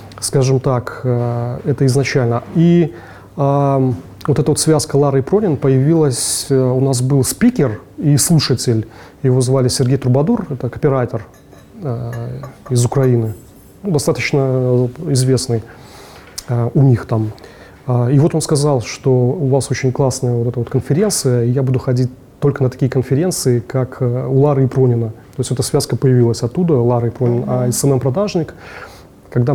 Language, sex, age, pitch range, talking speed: Russian, male, 30-49, 120-140 Hz, 150 wpm